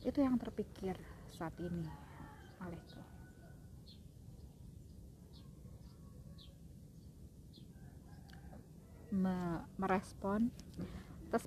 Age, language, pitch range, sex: 30-49, Indonesian, 175-205 Hz, female